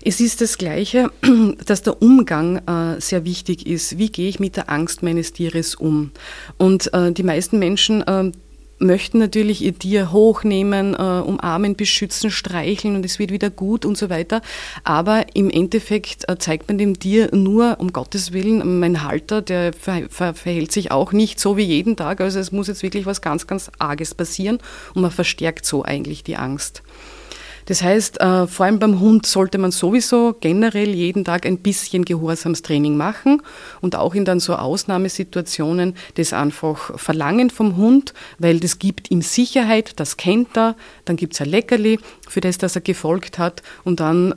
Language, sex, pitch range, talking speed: German, female, 170-205 Hz, 170 wpm